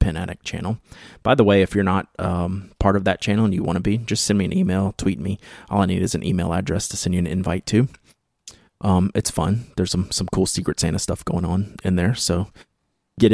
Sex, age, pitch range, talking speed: male, 30-49, 90-105 Hz, 245 wpm